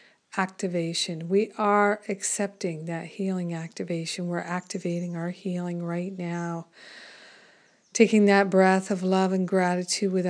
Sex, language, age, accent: female, English, 50-69, American